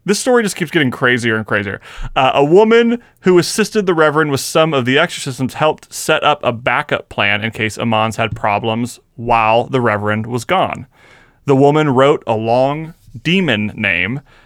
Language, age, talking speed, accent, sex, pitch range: English, 30-49, 180 wpm, American, male, 115-140 Hz